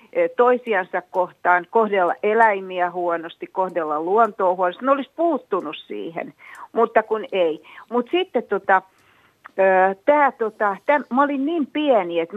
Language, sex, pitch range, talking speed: Finnish, female, 180-245 Hz, 115 wpm